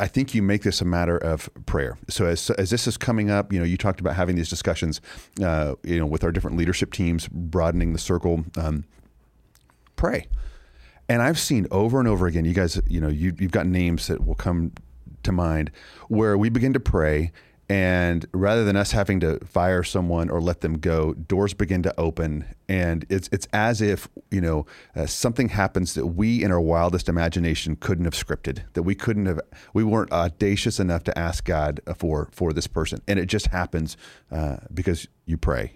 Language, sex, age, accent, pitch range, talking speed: English, male, 30-49, American, 80-95 Hz, 200 wpm